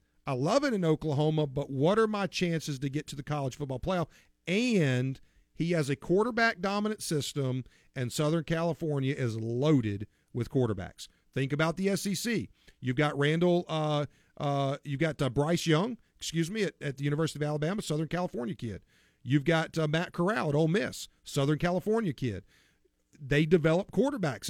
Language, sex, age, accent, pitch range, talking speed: English, male, 40-59, American, 135-175 Hz, 170 wpm